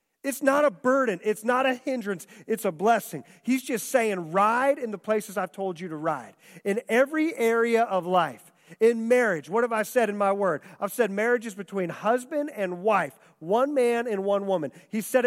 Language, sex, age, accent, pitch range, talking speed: English, male, 40-59, American, 190-250 Hz, 205 wpm